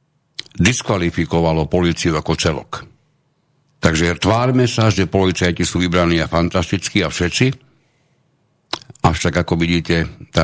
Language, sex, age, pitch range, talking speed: Slovak, male, 60-79, 85-105 Hz, 110 wpm